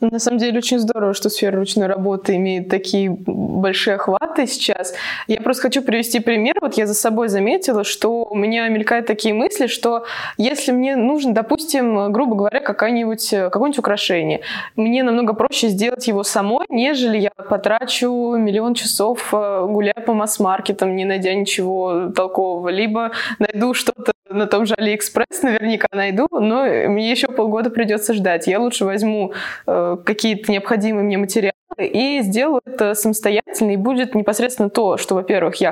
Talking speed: 150 wpm